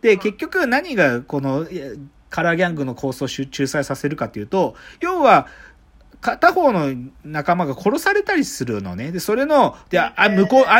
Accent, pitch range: native, 135-230 Hz